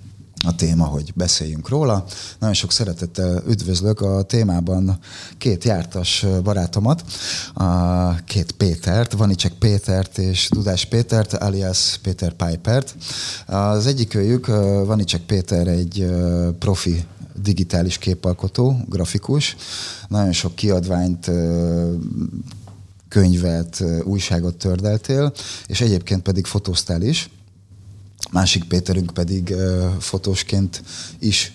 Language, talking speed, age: Hungarian, 95 wpm, 30-49